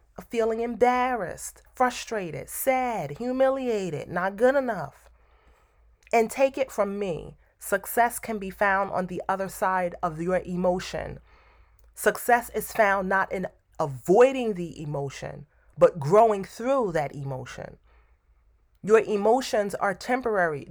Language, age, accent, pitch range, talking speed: English, 30-49, American, 185-240 Hz, 120 wpm